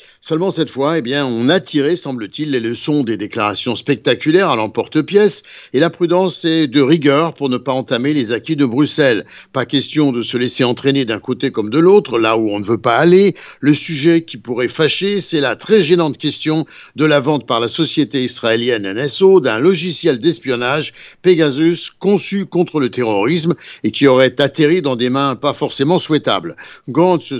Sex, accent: male, French